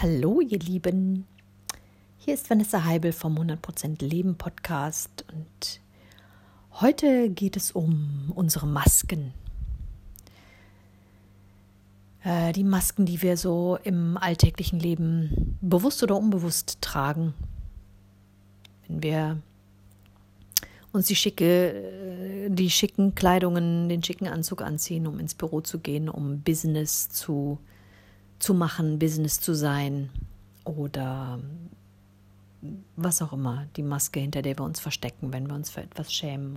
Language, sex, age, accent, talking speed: German, female, 50-69, German, 120 wpm